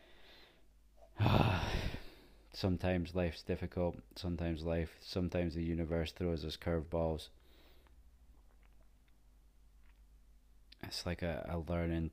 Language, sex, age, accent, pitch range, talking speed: English, male, 20-39, British, 80-85 Hz, 80 wpm